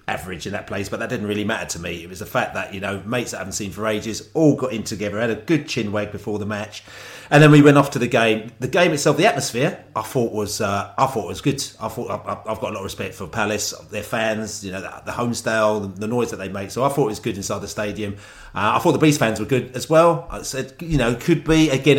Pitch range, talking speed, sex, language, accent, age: 105-130 Hz, 290 wpm, male, English, British, 30-49